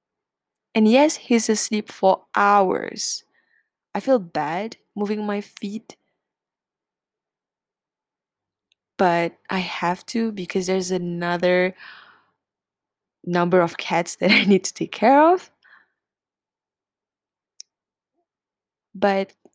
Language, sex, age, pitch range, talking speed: English, female, 20-39, 175-225 Hz, 90 wpm